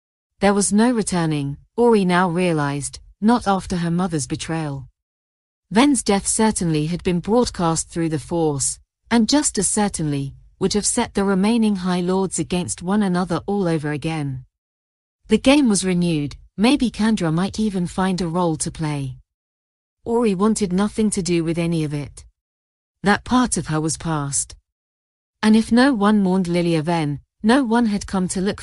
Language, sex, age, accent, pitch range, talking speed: English, female, 40-59, British, 150-205 Hz, 165 wpm